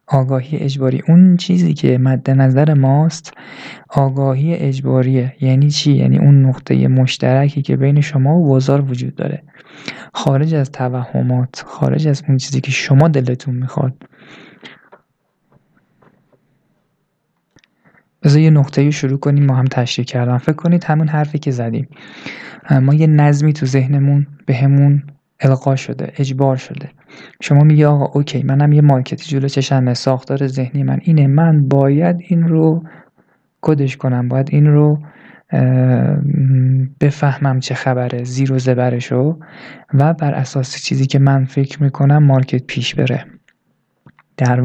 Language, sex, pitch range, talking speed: Persian, male, 130-145 Hz, 135 wpm